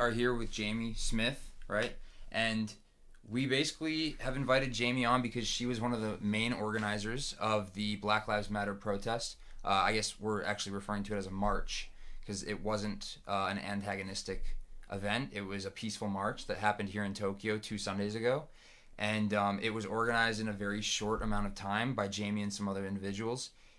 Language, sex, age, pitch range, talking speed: English, male, 20-39, 100-110 Hz, 190 wpm